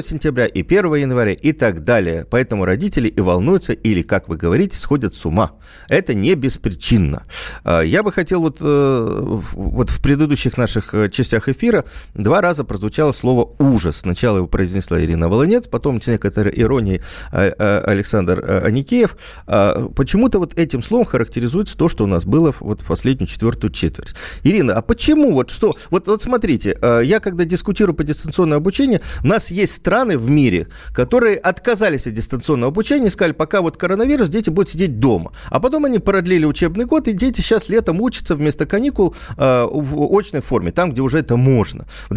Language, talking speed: Russian, 170 wpm